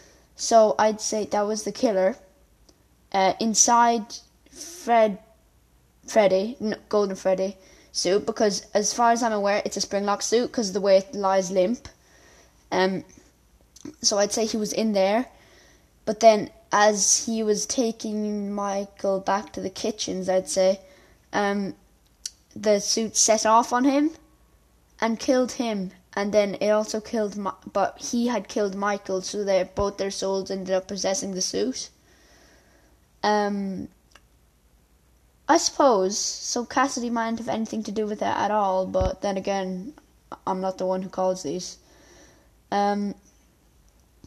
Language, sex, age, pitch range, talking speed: English, female, 10-29, 190-225 Hz, 145 wpm